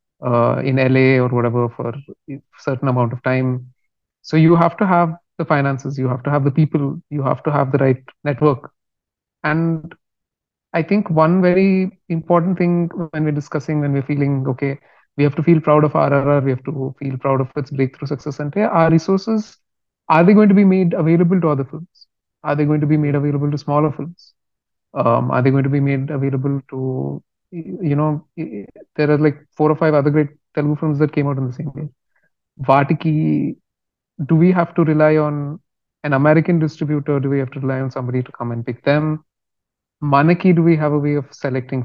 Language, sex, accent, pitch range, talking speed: Telugu, male, native, 135-160 Hz, 205 wpm